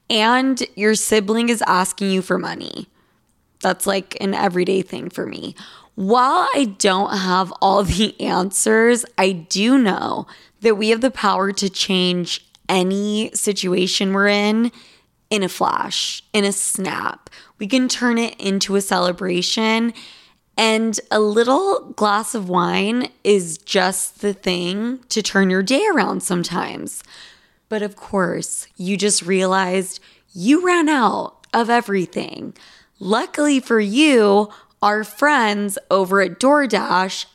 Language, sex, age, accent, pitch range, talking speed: English, female, 20-39, American, 185-230 Hz, 135 wpm